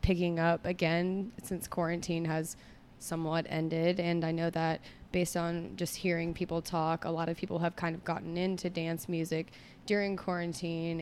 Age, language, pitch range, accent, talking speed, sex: 20-39, English, 160-175 Hz, American, 170 wpm, female